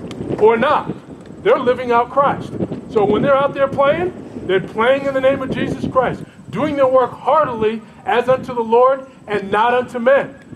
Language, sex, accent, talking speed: English, male, American, 180 wpm